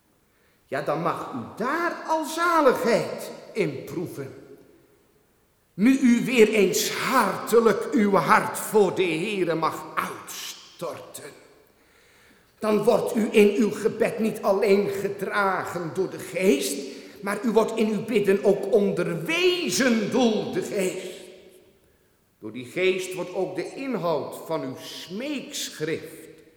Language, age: Dutch, 50-69